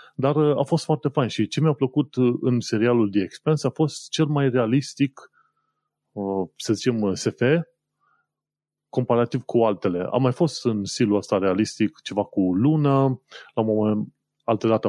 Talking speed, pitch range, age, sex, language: 155 wpm, 100-135 Hz, 30-49, male, Romanian